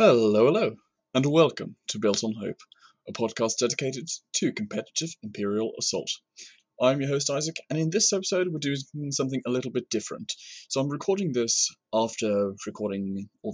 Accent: British